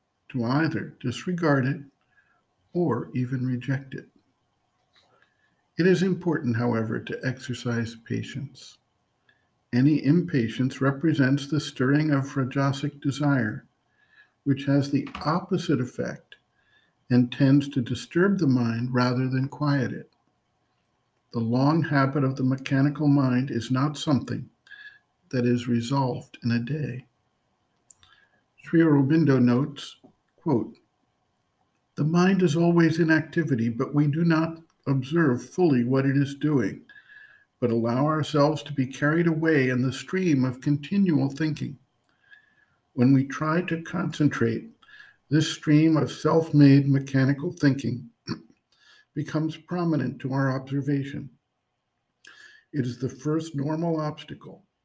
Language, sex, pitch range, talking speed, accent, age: English, male, 130-155 Hz, 120 wpm, American, 60-79